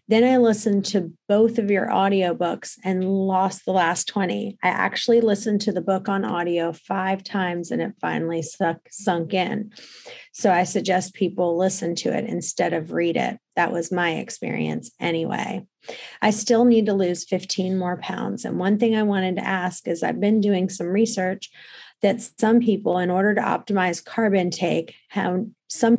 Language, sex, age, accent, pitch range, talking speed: English, female, 30-49, American, 175-215 Hz, 180 wpm